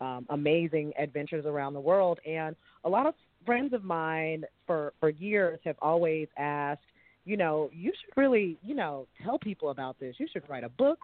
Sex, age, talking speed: female, 30-49, 190 wpm